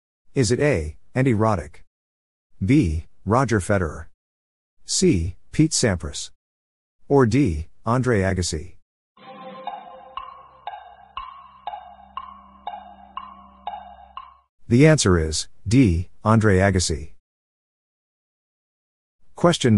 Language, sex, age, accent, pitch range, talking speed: English, male, 50-69, American, 85-140 Hz, 65 wpm